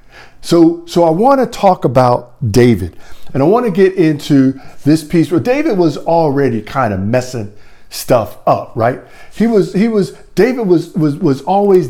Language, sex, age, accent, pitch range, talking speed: English, male, 50-69, American, 130-190 Hz, 175 wpm